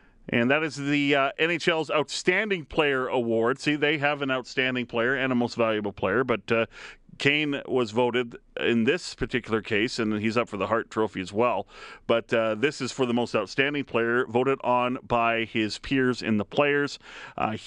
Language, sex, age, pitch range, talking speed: English, male, 40-59, 115-150 Hz, 190 wpm